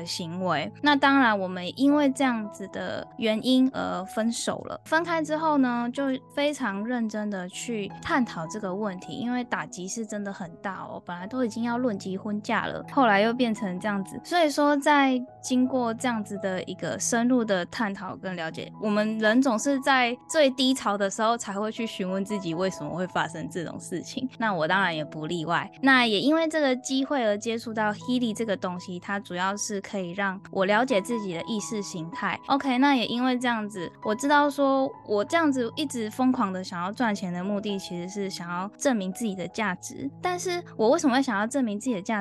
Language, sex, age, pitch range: Chinese, female, 10-29, 195-255 Hz